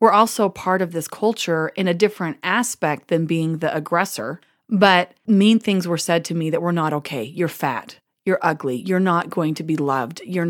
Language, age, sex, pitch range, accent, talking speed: English, 30-49, female, 160-195 Hz, American, 205 wpm